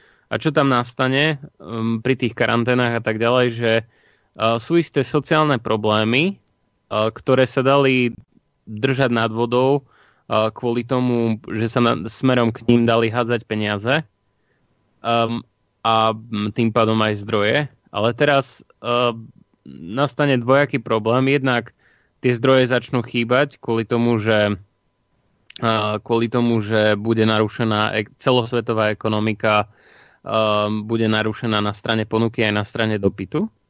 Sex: male